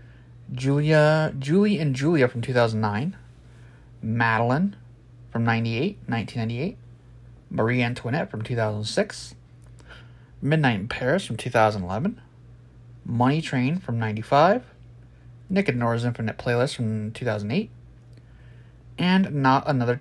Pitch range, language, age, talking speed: 115-125 Hz, English, 30-49, 100 wpm